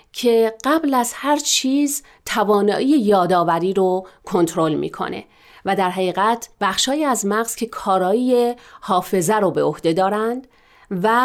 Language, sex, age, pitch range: Persian, female, 40-59, 185-245 Hz